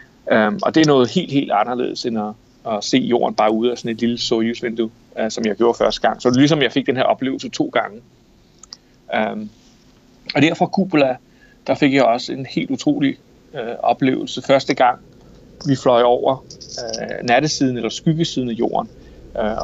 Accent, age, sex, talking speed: native, 30-49, male, 195 wpm